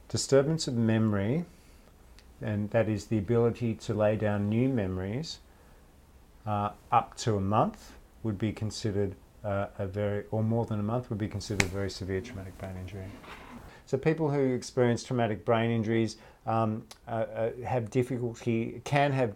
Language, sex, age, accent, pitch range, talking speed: English, male, 50-69, Australian, 105-120 Hz, 160 wpm